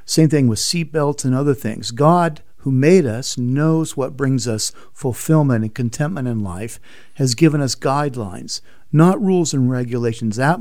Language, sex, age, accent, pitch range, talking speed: English, male, 50-69, American, 115-155 Hz, 170 wpm